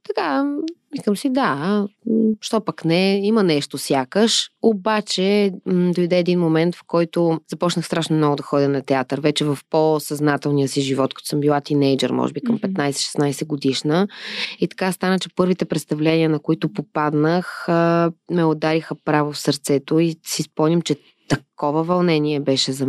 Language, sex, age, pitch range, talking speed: Bulgarian, female, 20-39, 150-190 Hz, 155 wpm